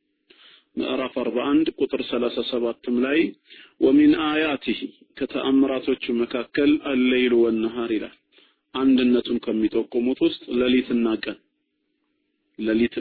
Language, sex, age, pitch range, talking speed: Amharic, male, 40-59, 120-165 Hz, 70 wpm